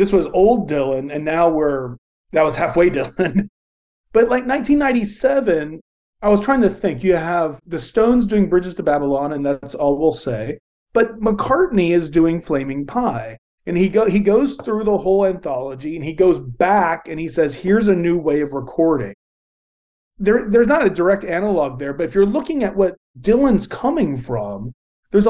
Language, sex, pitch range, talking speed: English, male, 145-215 Hz, 185 wpm